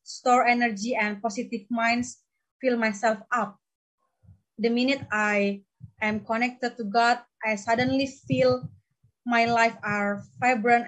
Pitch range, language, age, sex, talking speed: 215-260 Hz, English, 20-39, female, 120 wpm